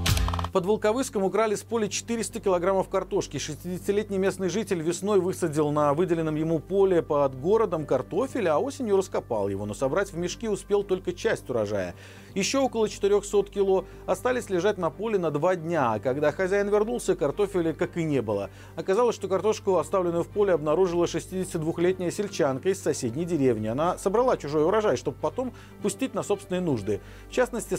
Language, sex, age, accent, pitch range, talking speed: Russian, male, 40-59, native, 150-205 Hz, 165 wpm